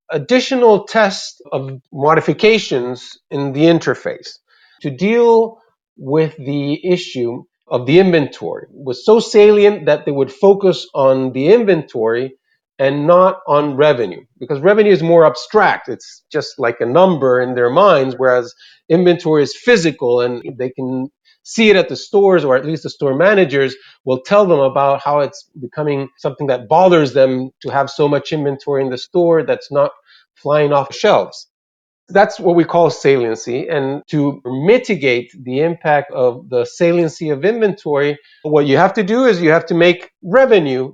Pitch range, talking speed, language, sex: 135-190 Hz, 160 wpm, English, male